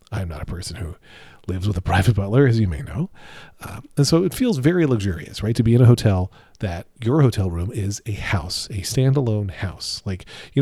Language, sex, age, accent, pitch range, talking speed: English, male, 40-59, American, 95-130 Hz, 220 wpm